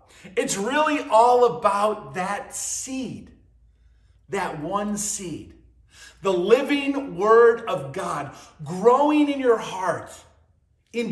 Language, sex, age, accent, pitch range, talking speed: English, male, 50-69, American, 175-255 Hz, 105 wpm